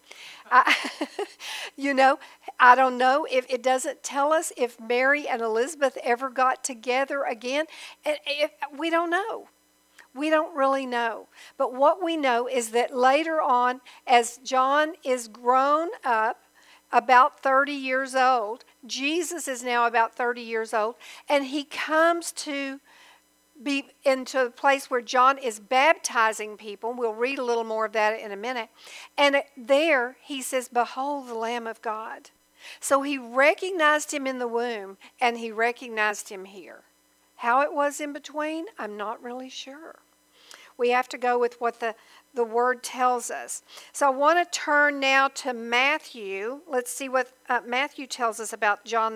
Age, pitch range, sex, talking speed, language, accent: 50-69, 240-285 Hz, female, 160 wpm, English, American